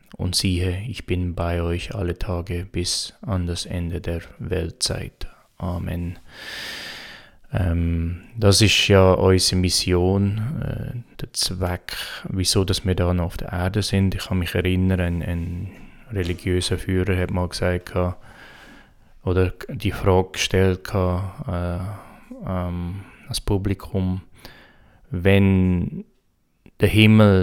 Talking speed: 125 wpm